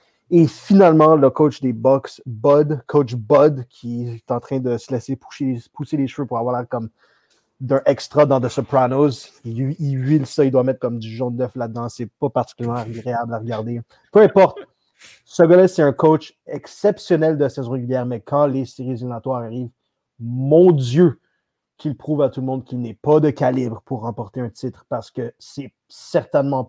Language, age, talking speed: French, 30-49, 190 wpm